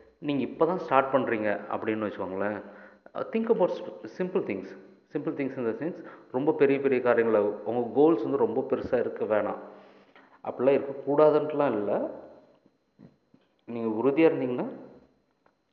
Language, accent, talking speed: Tamil, native, 125 wpm